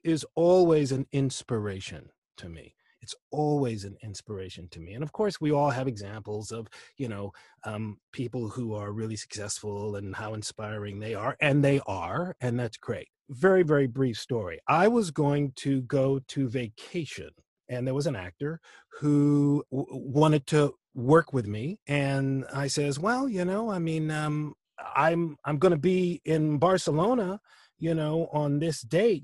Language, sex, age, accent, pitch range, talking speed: English, male, 30-49, American, 130-175 Hz, 165 wpm